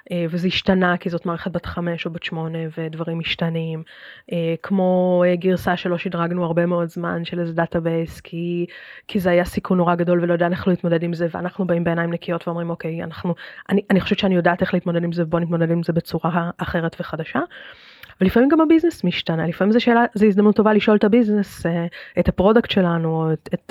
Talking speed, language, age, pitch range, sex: 185 wpm, Hebrew, 20-39, 170-205 Hz, female